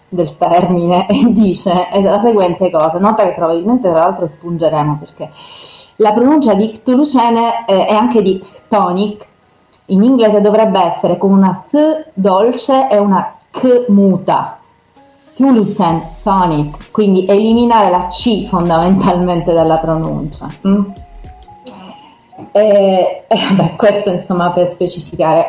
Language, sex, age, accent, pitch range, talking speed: Italian, female, 30-49, native, 170-210 Hz, 120 wpm